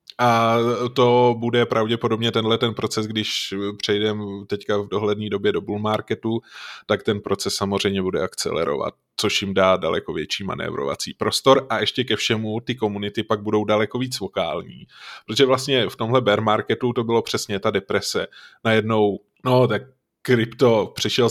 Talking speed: 160 wpm